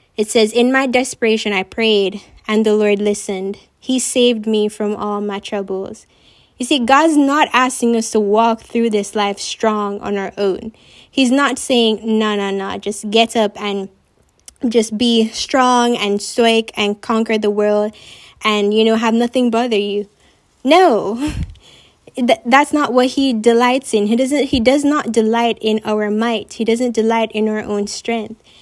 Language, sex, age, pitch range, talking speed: English, female, 10-29, 215-255 Hz, 170 wpm